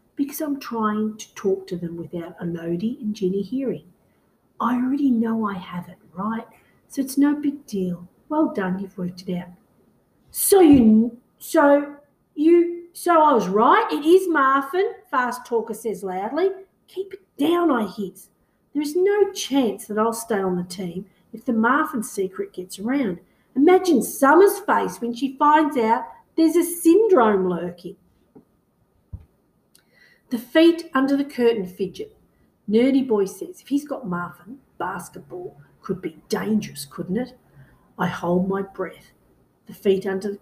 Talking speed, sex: 155 wpm, female